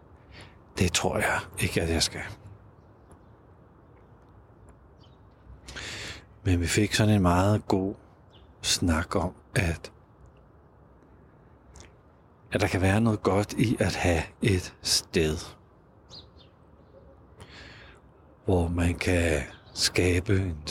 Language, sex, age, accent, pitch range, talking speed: Danish, male, 60-79, native, 85-105 Hz, 95 wpm